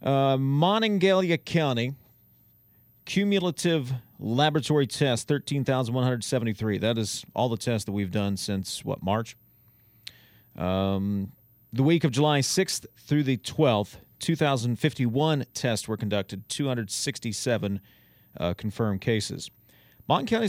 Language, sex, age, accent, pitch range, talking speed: English, male, 40-59, American, 110-145 Hz, 110 wpm